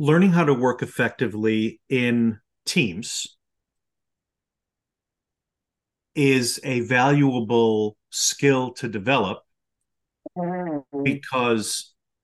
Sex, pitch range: male, 110-140 Hz